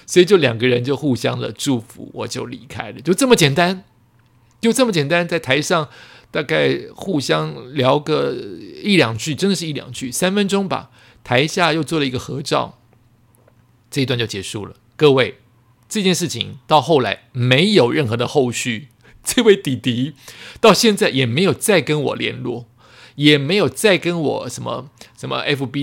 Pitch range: 120-160 Hz